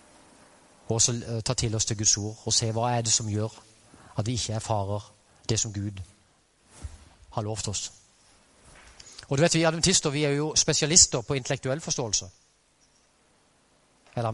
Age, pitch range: 40-59, 110-140 Hz